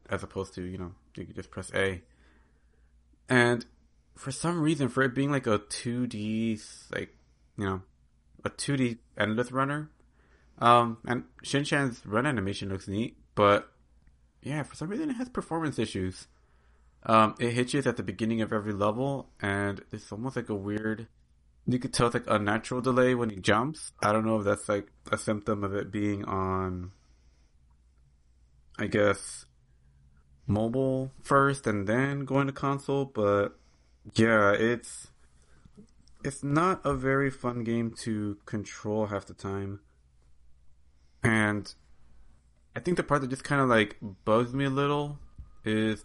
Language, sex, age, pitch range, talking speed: English, male, 30-49, 80-120 Hz, 155 wpm